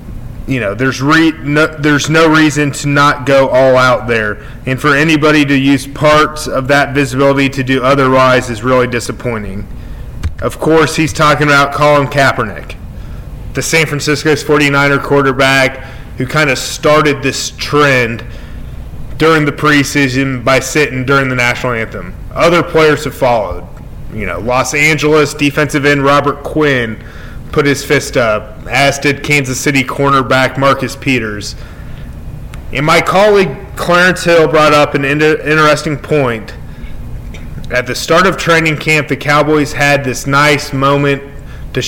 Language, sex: English, male